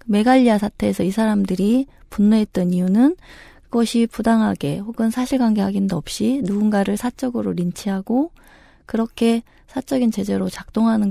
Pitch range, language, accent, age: 180-230 Hz, Korean, native, 20-39